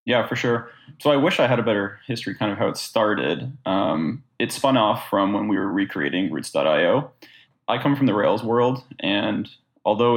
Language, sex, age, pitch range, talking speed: English, male, 20-39, 110-125 Hz, 200 wpm